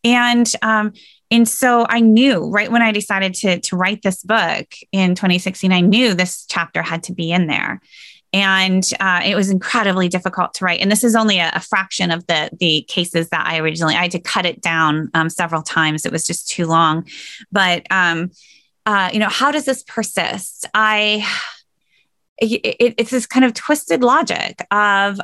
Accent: American